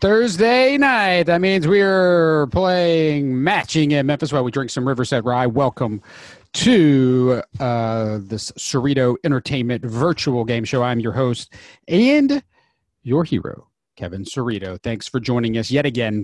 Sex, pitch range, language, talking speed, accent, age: male, 115-150 Hz, English, 140 wpm, American, 40-59